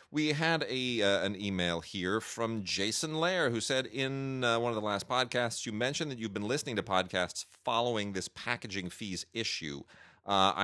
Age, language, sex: 30-49, English, male